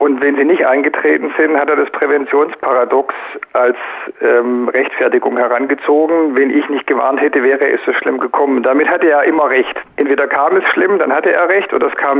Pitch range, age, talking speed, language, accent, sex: 130-165 Hz, 50-69, 195 wpm, German, German, male